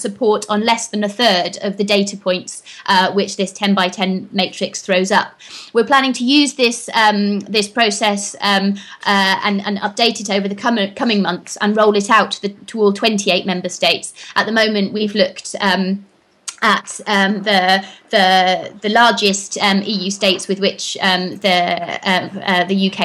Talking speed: 195 wpm